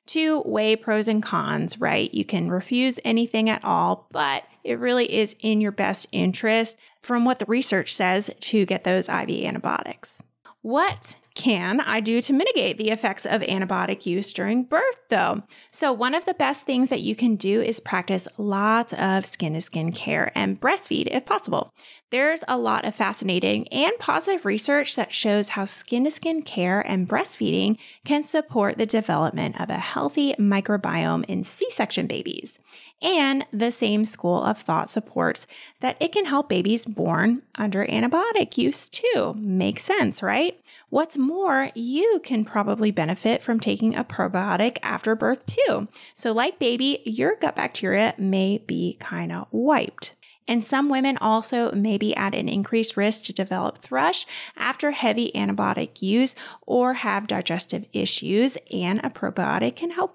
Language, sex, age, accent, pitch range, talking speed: English, female, 20-39, American, 200-270 Hz, 160 wpm